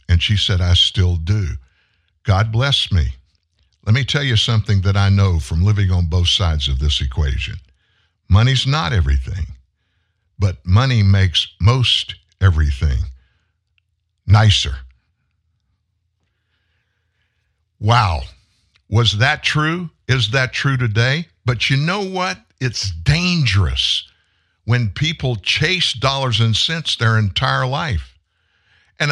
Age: 60-79